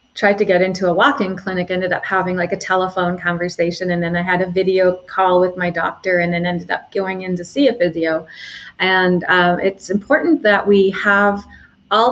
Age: 30-49